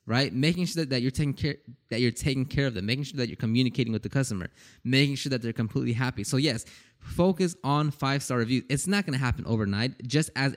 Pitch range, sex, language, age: 115-140 Hz, male, English, 20-39